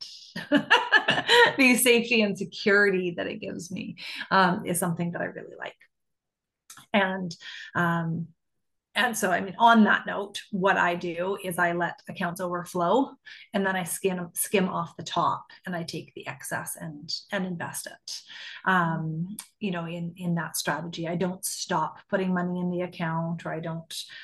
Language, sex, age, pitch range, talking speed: English, female, 30-49, 175-220 Hz, 165 wpm